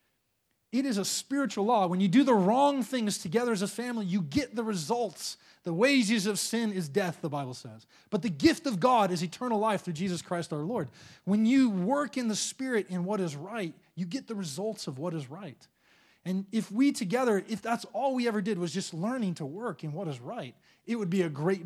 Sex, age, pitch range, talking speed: male, 20-39, 165-225 Hz, 230 wpm